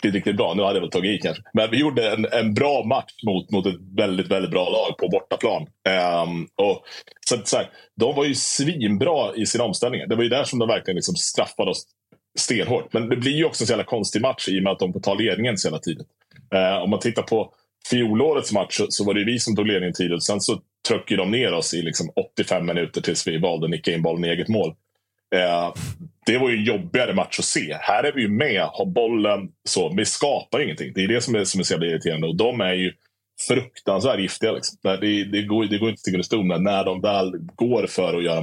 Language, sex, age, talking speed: Swedish, male, 30-49, 240 wpm